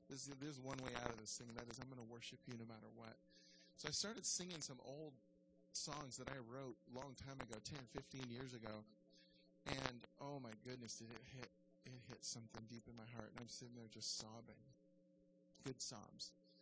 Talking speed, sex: 210 wpm, male